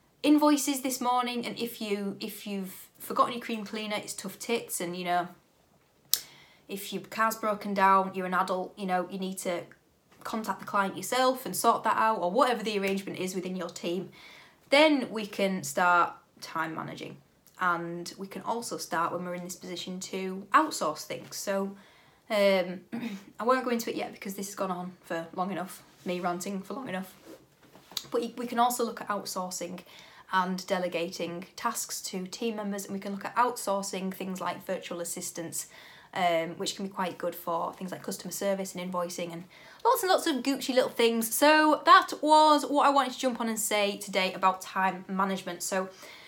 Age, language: 20-39, English